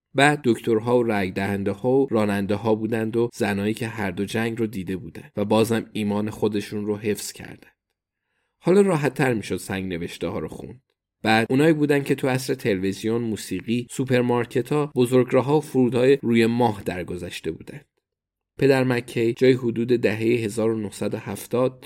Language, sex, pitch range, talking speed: Persian, male, 105-130 Hz, 160 wpm